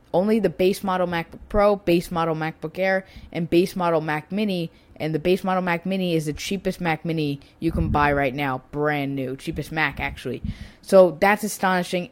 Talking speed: 195 wpm